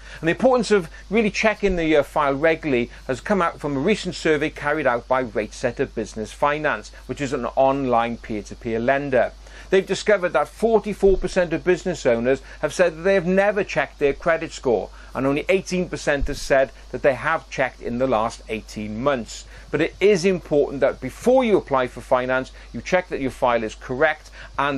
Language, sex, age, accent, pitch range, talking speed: English, male, 40-59, British, 130-185 Hz, 190 wpm